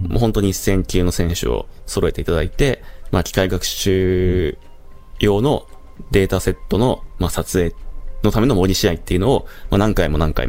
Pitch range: 80-105 Hz